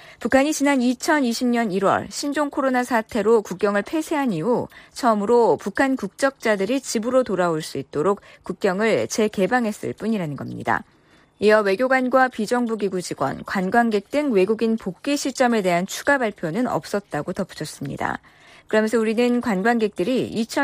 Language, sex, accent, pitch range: Korean, female, native, 190-255 Hz